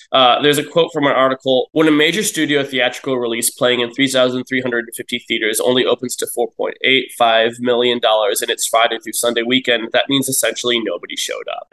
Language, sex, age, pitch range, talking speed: English, male, 20-39, 120-140 Hz, 180 wpm